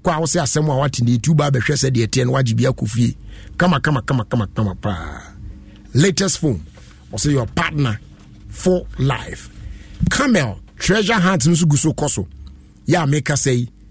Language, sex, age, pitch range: English, male, 50-69, 120-180 Hz